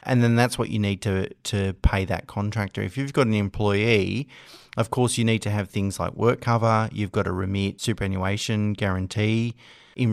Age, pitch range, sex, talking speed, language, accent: 30-49, 100-120 Hz, male, 195 wpm, English, Australian